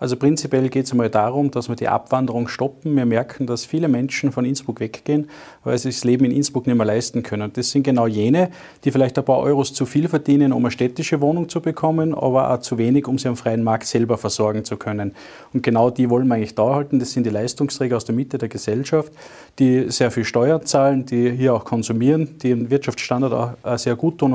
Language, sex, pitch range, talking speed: German, male, 120-145 Hz, 230 wpm